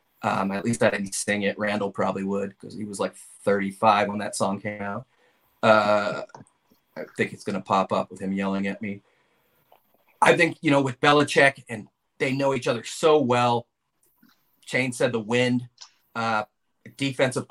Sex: male